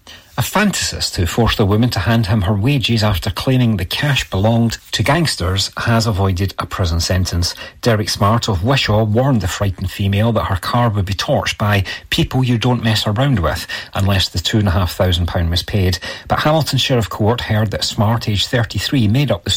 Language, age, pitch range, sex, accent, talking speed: English, 40-59, 95-120 Hz, male, British, 185 wpm